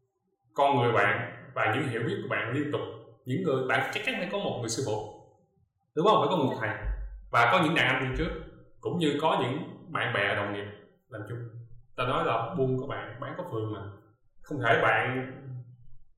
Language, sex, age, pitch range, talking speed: Vietnamese, male, 20-39, 120-170 Hz, 215 wpm